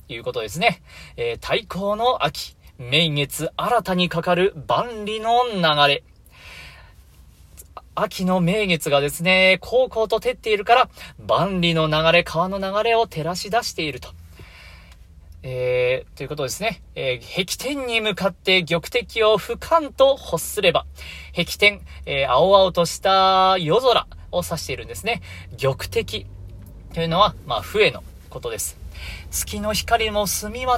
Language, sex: Japanese, male